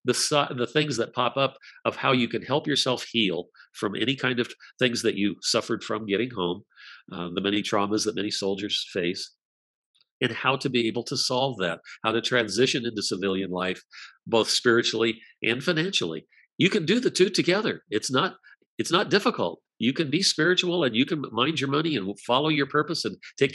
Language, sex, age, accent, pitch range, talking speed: English, male, 50-69, American, 110-145 Hz, 190 wpm